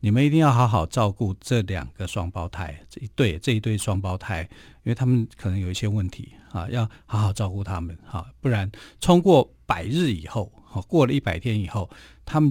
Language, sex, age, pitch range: Chinese, male, 50-69, 100-130 Hz